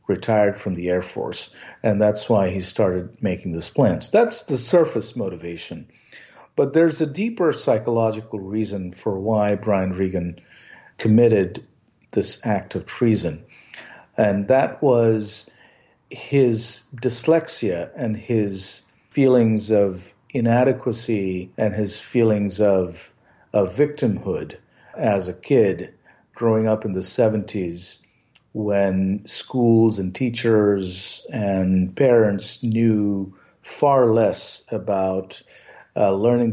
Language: English